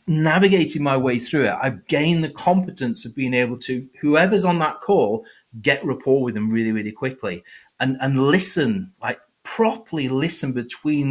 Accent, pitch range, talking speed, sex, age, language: British, 130-170 Hz, 165 wpm, male, 30-49, English